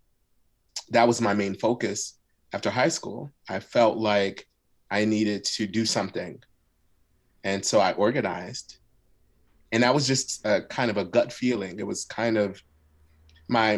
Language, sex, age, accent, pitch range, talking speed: English, male, 30-49, American, 100-120 Hz, 155 wpm